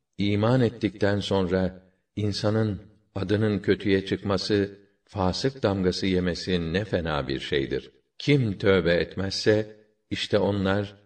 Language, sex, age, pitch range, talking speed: Turkish, male, 50-69, 90-105 Hz, 105 wpm